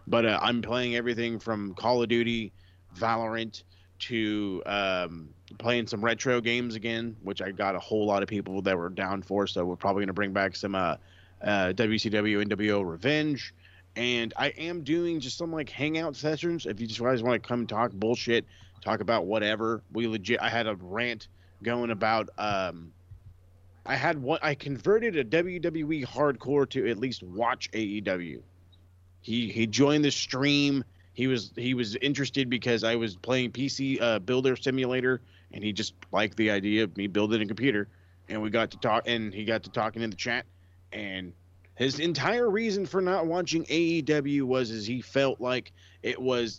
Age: 30-49